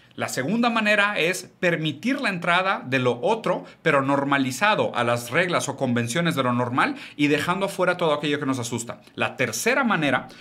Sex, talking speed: male, 180 wpm